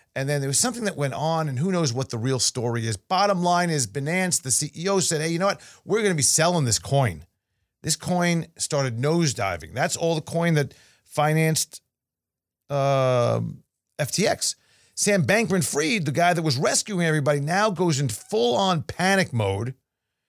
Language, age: English, 40-59